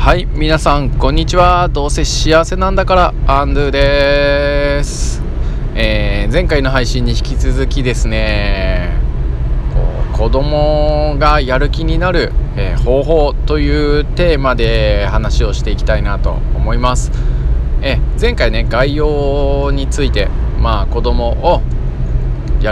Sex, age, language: male, 20-39, Japanese